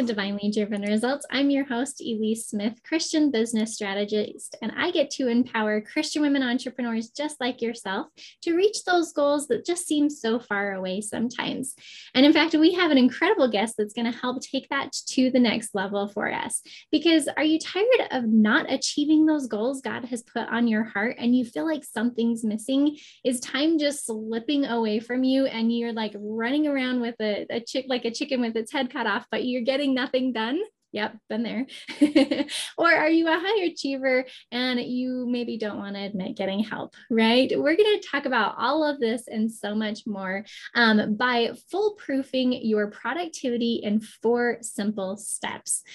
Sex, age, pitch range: female, 10-29, 220-285 Hz